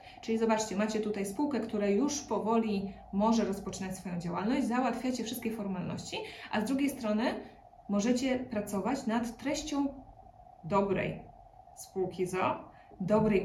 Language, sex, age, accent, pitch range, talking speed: Polish, female, 20-39, native, 200-265 Hz, 120 wpm